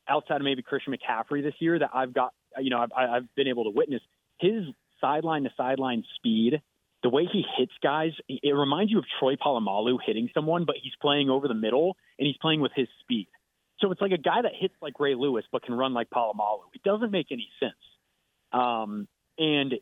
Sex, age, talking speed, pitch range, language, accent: male, 30-49, 210 wpm, 120-160 Hz, English, American